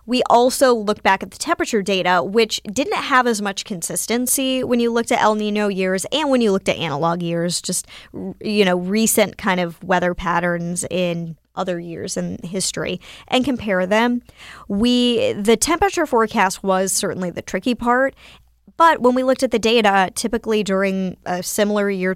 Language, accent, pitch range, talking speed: English, American, 180-225 Hz, 175 wpm